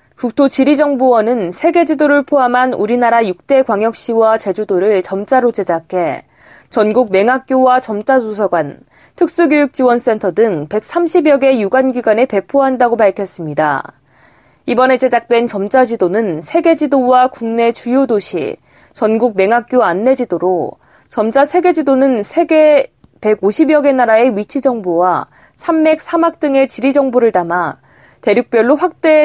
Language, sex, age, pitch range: Korean, female, 20-39, 215-285 Hz